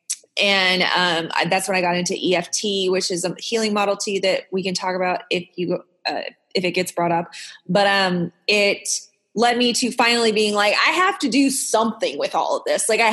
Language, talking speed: English, 220 wpm